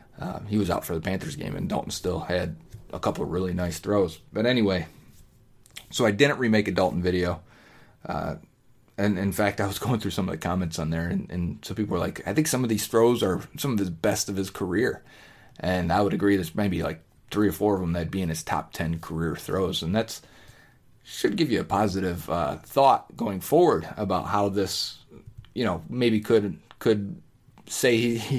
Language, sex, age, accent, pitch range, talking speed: English, male, 30-49, American, 90-110 Hz, 215 wpm